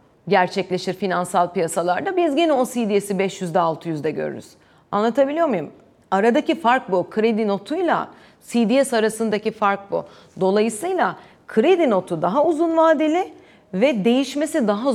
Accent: native